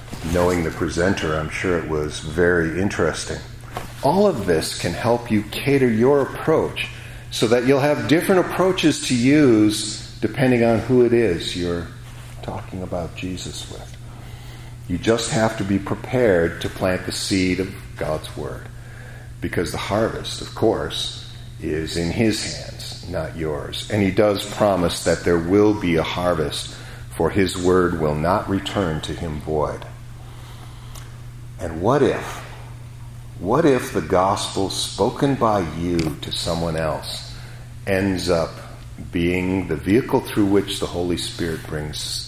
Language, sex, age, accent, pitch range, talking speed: English, male, 50-69, American, 90-120 Hz, 145 wpm